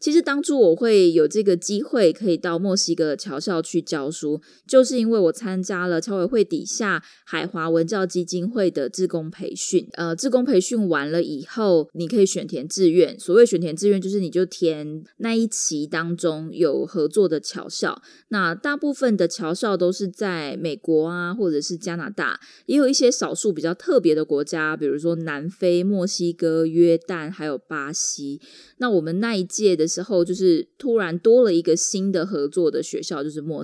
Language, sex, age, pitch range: Chinese, female, 20-39, 165-225 Hz